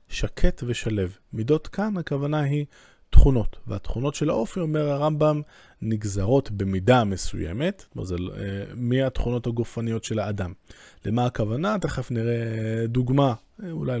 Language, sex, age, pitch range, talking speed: Hebrew, male, 20-39, 110-145 Hz, 120 wpm